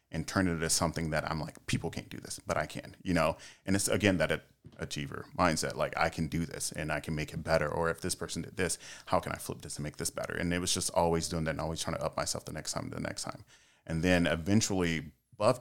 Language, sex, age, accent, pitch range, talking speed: English, male, 30-49, American, 80-90 Hz, 280 wpm